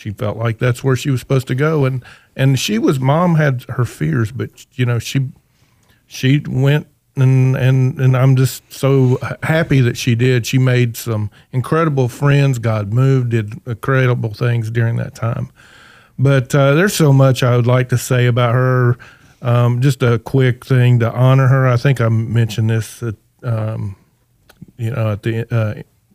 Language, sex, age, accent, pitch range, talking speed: English, male, 40-59, American, 115-140 Hz, 180 wpm